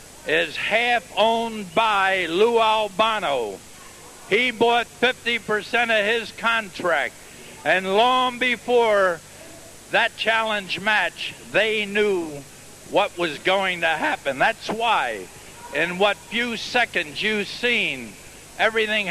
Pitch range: 180-225 Hz